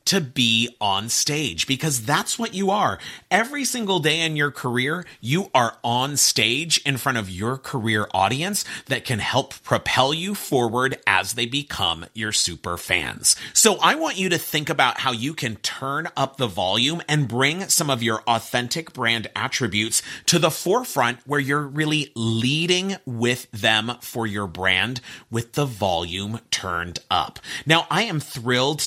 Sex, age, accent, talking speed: male, 30-49, American, 165 wpm